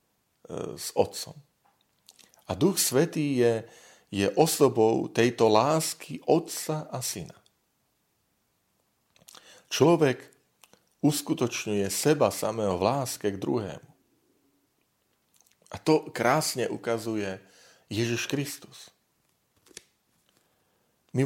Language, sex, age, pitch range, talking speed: Slovak, male, 40-59, 110-135 Hz, 80 wpm